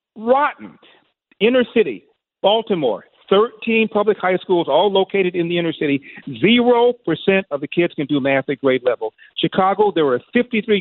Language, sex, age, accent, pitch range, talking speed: English, male, 50-69, American, 155-205 Hz, 160 wpm